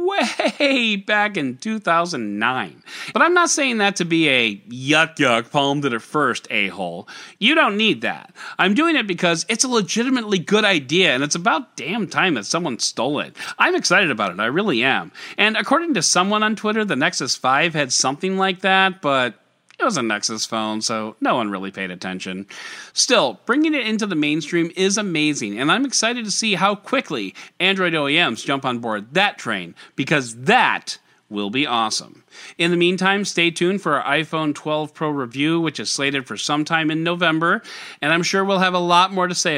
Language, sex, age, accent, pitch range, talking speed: English, male, 40-59, American, 140-215 Hz, 195 wpm